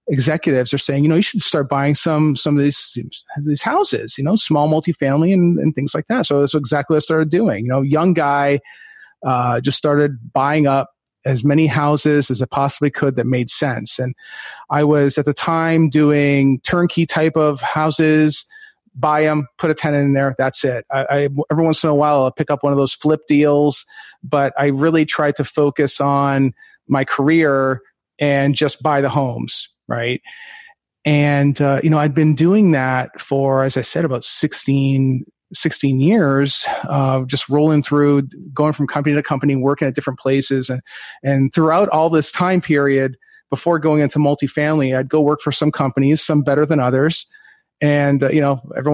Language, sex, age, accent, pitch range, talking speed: English, male, 30-49, American, 140-160 Hz, 190 wpm